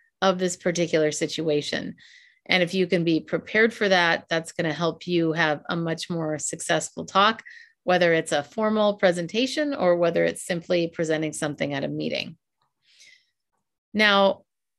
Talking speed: 150 wpm